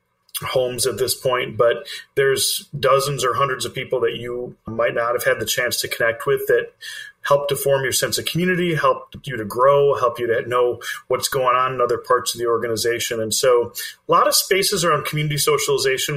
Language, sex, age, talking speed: English, male, 40-59, 210 wpm